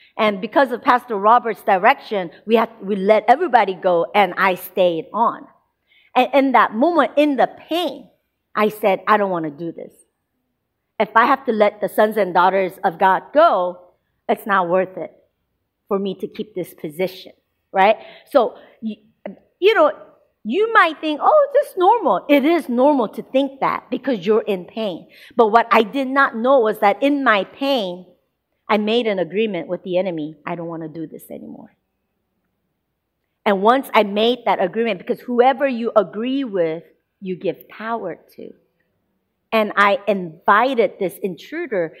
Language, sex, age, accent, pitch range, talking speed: English, female, 50-69, American, 190-280 Hz, 170 wpm